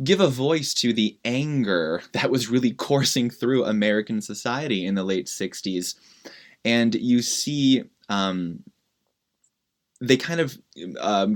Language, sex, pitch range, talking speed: English, male, 100-125 Hz, 130 wpm